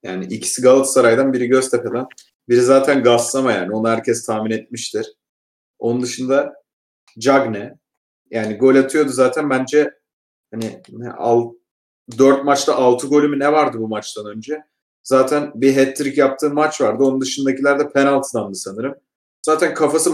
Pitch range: 125-150 Hz